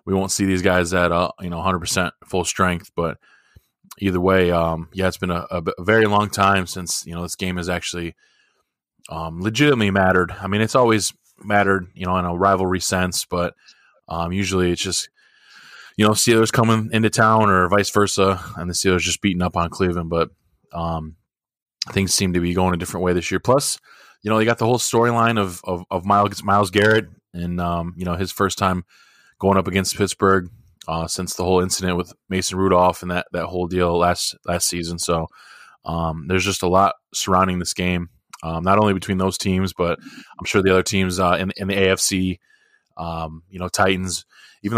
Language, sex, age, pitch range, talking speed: English, male, 20-39, 85-100 Hz, 200 wpm